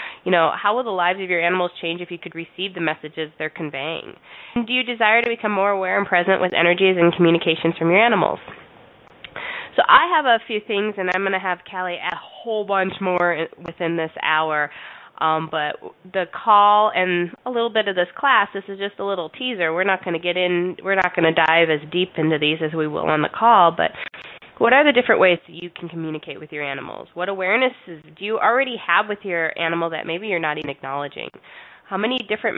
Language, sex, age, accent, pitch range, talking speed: English, female, 20-39, American, 165-200 Hz, 230 wpm